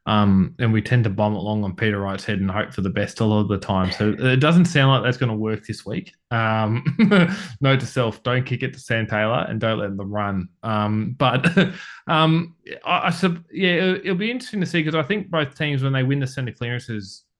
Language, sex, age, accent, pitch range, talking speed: English, male, 20-39, Australian, 105-130 Hz, 245 wpm